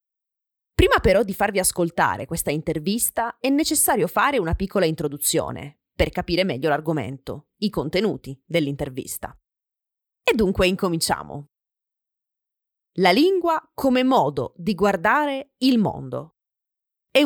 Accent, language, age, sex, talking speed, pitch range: native, Italian, 30-49, female, 110 wpm, 160-245 Hz